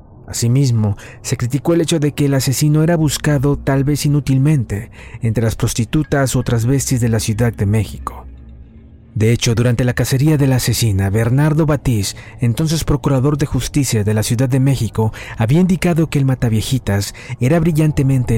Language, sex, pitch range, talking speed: Spanish, male, 110-145 Hz, 165 wpm